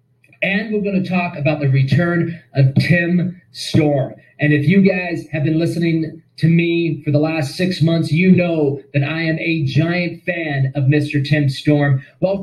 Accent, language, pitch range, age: American, English, 150-190 Hz, 30-49